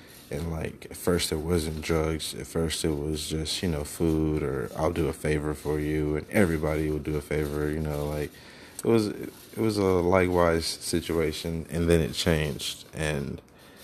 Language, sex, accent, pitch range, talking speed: English, male, American, 75-90 Hz, 185 wpm